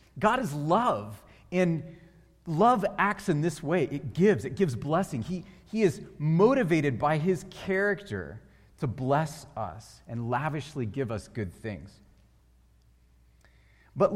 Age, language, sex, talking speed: 40-59, English, male, 130 wpm